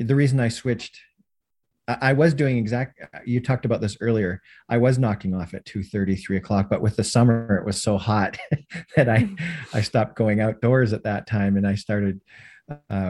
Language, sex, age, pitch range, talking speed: English, male, 40-59, 100-125 Hz, 190 wpm